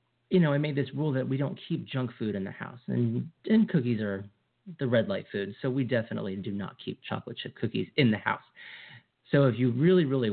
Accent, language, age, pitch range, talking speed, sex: American, English, 40-59, 105-135 Hz, 230 wpm, male